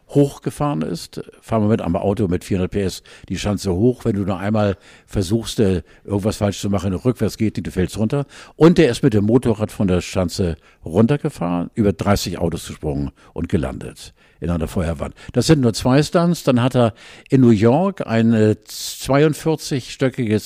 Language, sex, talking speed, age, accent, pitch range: German, male, 175 wpm, 50-69, German, 100-130 Hz